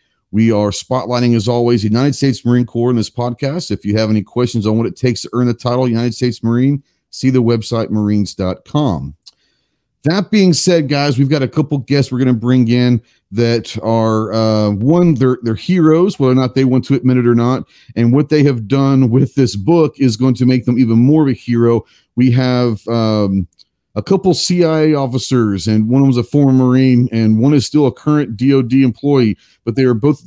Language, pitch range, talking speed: English, 110-135 Hz, 215 wpm